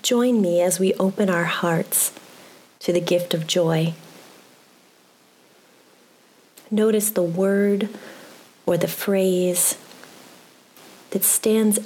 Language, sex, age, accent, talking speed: English, female, 30-49, American, 100 wpm